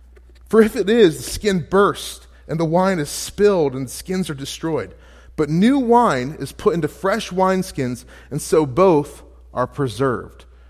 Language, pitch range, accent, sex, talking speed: English, 130-200 Hz, American, male, 170 wpm